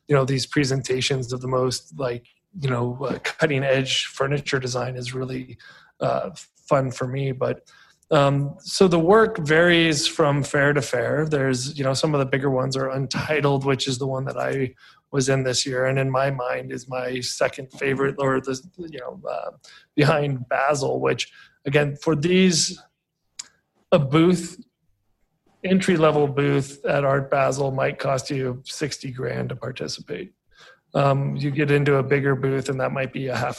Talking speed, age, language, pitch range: 175 wpm, 30-49, English, 130-145 Hz